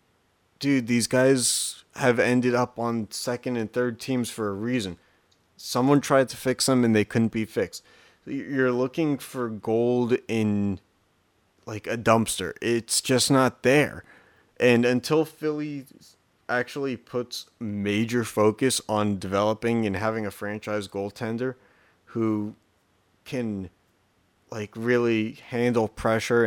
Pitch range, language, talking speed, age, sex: 100-125 Hz, English, 125 wpm, 30-49, male